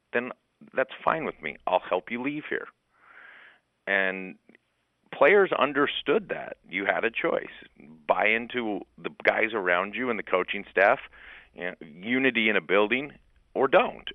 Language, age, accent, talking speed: English, 40-59, American, 145 wpm